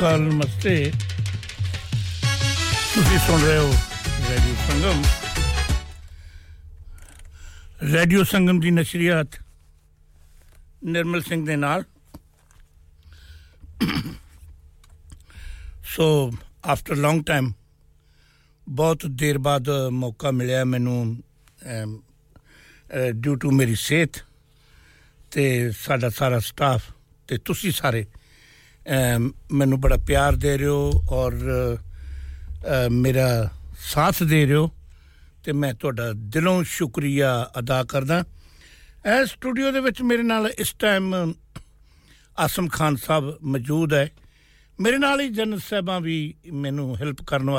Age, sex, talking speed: 60-79, male, 55 wpm